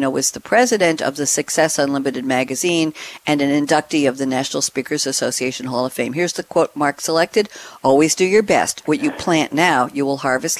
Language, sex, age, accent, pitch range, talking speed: English, female, 60-79, American, 140-190 Hz, 200 wpm